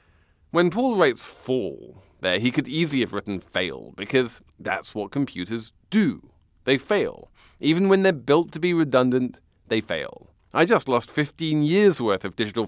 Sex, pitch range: male, 100-150 Hz